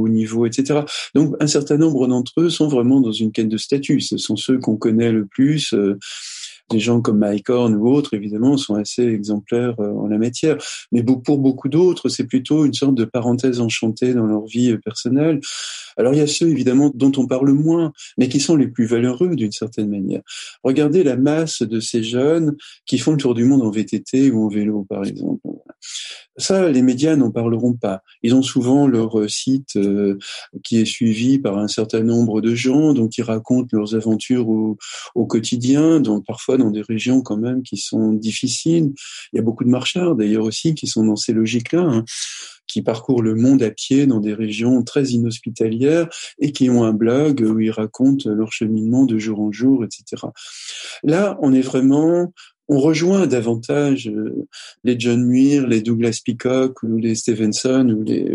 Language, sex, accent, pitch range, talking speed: French, male, French, 110-140 Hz, 190 wpm